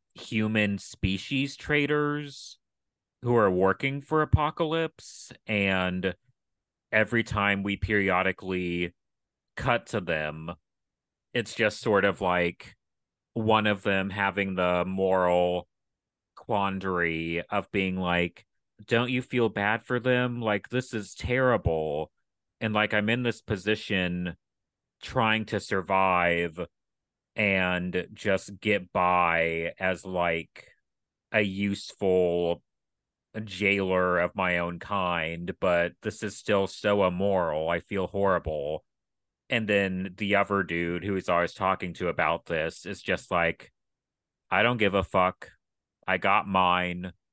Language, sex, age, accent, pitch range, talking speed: English, male, 30-49, American, 90-105 Hz, 120 wpm